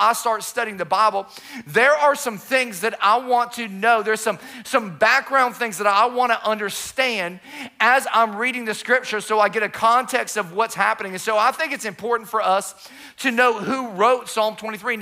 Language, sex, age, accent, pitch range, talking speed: English, male, 40-59, American, 210-250 Hz, 200 wpm